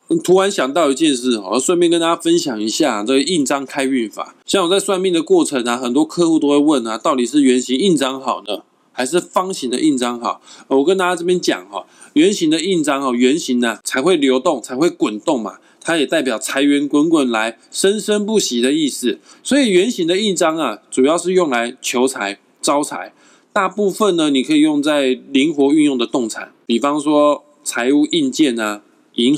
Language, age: Chinese, 20-39